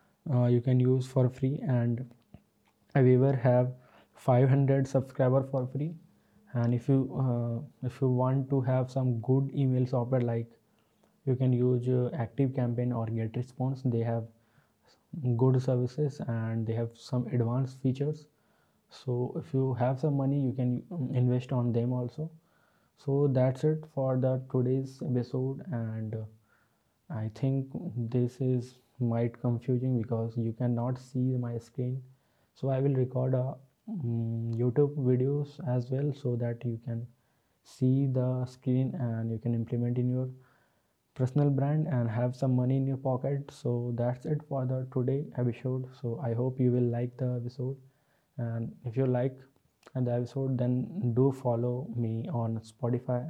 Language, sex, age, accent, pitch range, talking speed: Hindi, male, 20-39, native, 120-135 Hz, 155 wpm